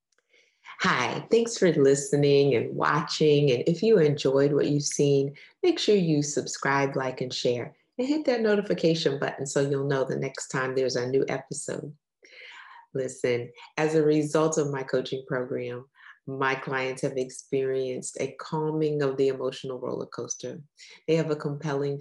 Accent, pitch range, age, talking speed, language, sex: American, 130-150 Hz, 30-49, 160 wpm, English, female